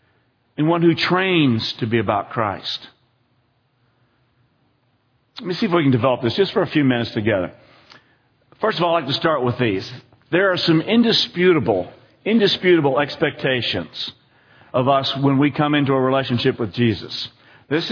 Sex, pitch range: male, 120-150 Hz